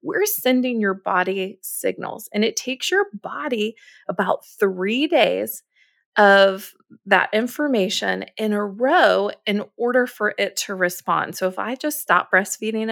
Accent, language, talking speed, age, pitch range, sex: American, English, 145 wpm, 30-49, 195-280 Hz, female